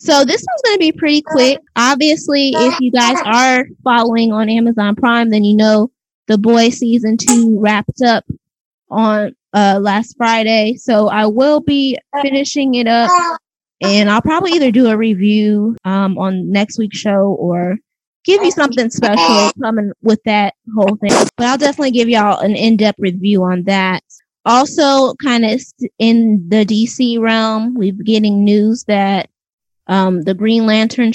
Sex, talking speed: female, 165 wpm